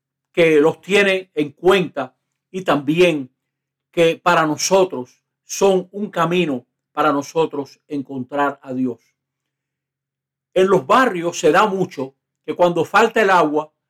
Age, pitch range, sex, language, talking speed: 60-79, 140-200 Hz, male, Spanish, 125 wpm